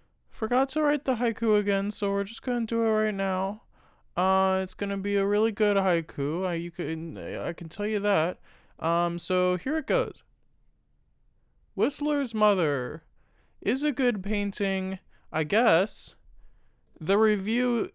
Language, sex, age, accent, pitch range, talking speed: English, male, 20-39, American, 190-230 Hz, 150 wpm